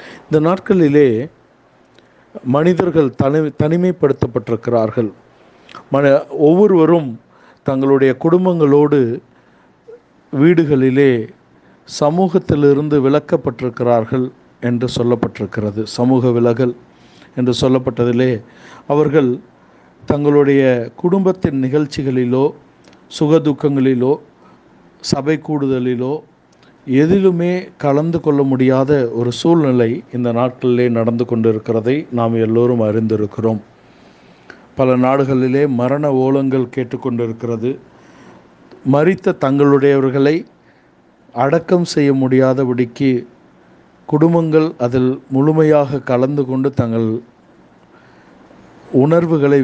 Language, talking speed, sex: Tamil, 65 wpm, male